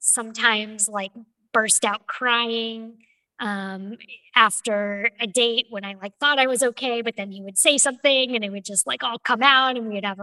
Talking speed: 200 wpm